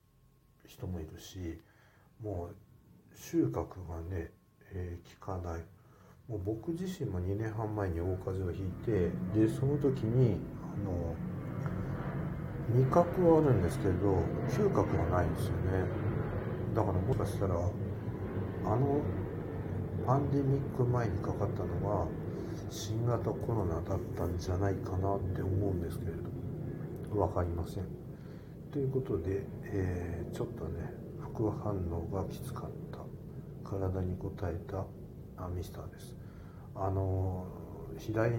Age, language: 60-79, Japanese